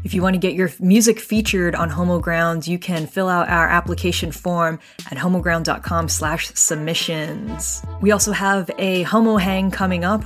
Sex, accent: female, American